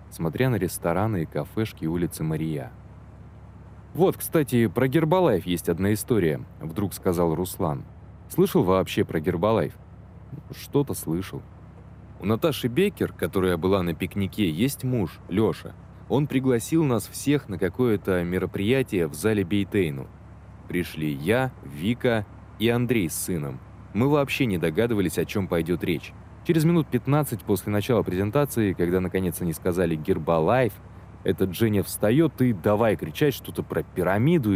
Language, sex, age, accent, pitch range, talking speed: Russian, male, 20-39, native, 90-125 Hz, 135 wpm